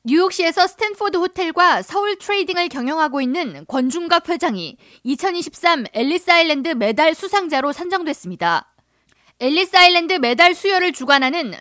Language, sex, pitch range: Korean, female, 250-345 Hz